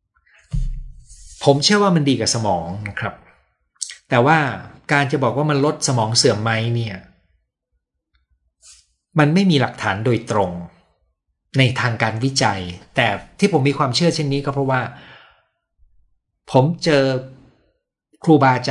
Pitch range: 100-135 Hz